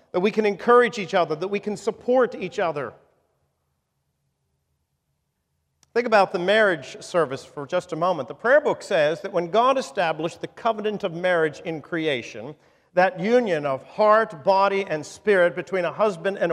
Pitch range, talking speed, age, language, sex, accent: 130-210 Hz, 165 wpm, 40-59, English, male, American